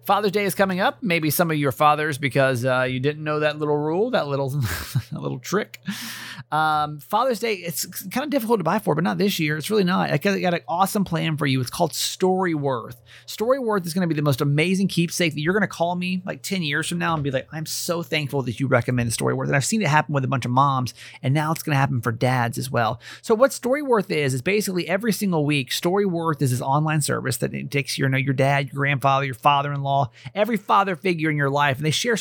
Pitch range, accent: 135-190 Hz, American